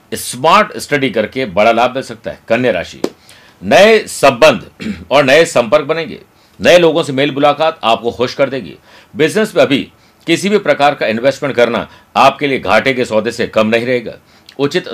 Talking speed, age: 175 wpm, 50-69